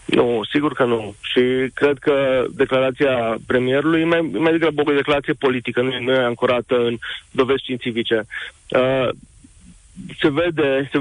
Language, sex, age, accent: Romanian, male, 30-49, native